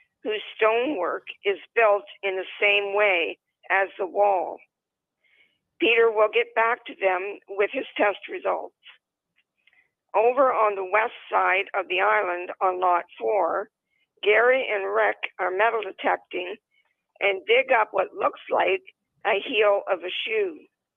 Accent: American